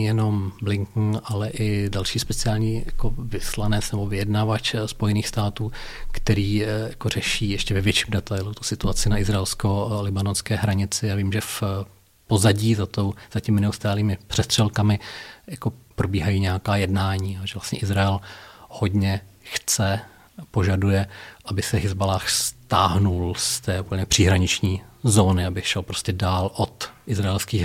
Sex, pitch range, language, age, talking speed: male, 100-110 Hz, Czech, 40-59, 120 wpm